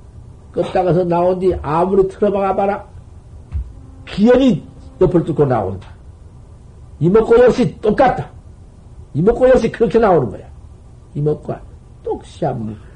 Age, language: 60-79, Korean